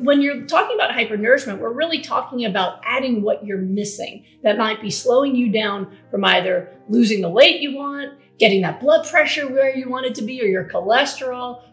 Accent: American